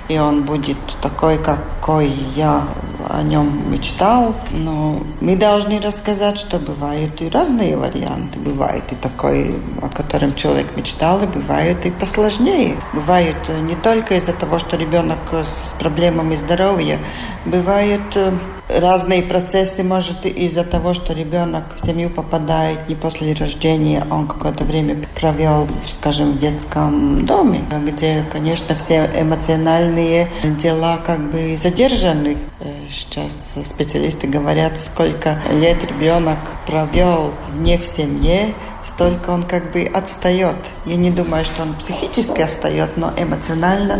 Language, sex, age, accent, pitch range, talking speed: Russian, female, 40-59, native, 155-180 Hz, 125 wpm